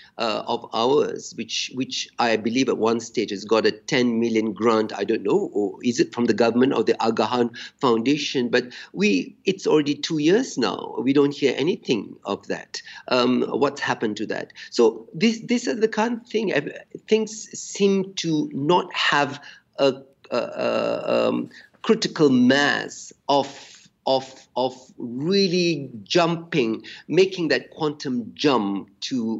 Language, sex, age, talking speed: English, male, 50-69, 155 wpm